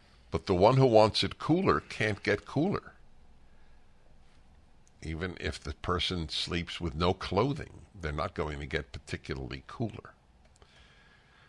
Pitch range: 75-95 Hz